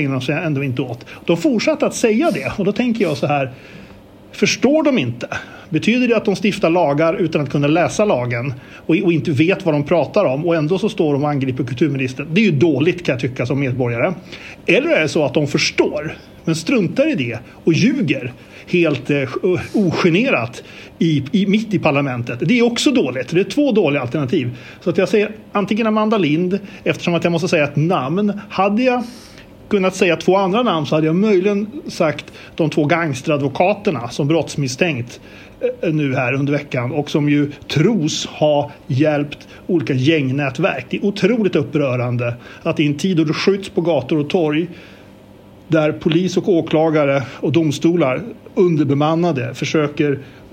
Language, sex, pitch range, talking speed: Swedish, male, 140-180 Hz, 180 wpm